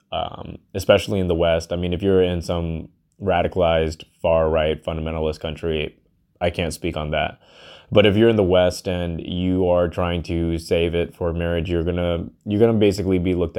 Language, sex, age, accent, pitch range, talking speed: English, male, 20-39, American, 85-100 Hz, 185 wpm